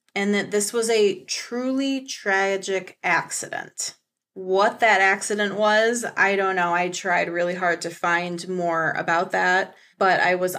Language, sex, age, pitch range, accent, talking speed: English, female, 20-39, 180-225 Hz, American, 155 wpm